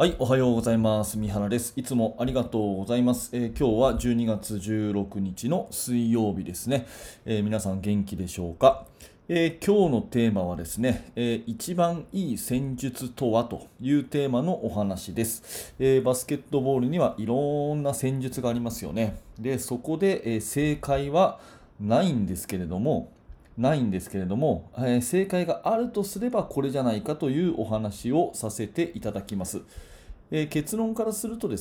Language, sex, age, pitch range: Japanese, male, 30-49, 105-140 Hz